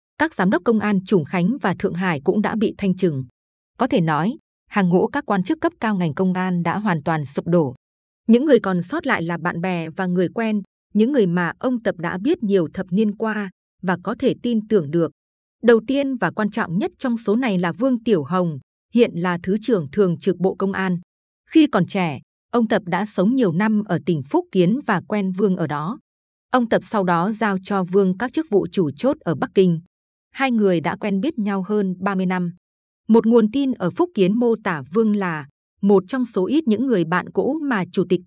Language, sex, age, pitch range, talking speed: Vietnamese, female, 20-39, 180-230 Hz, 230 wpm